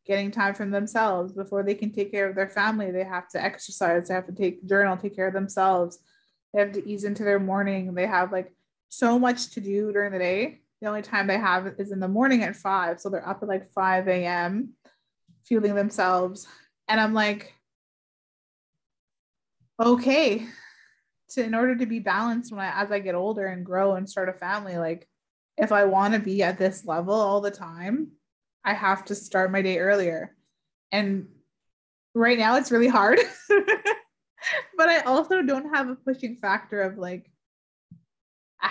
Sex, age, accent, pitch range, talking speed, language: female, 20-39, American, 185-220 Hz, 190 wpm, English